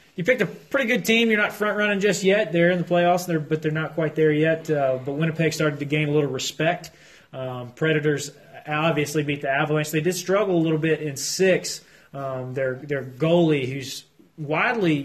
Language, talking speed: English, 200 wpm